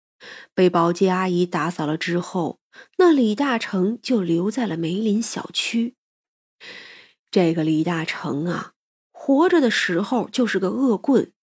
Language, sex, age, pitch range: Chinese, female, 20-39, 175-250 Hz